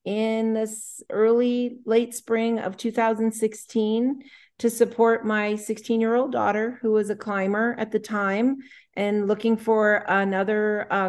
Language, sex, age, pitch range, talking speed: English, female, 40-59, 190-225 Hz, 140 wpm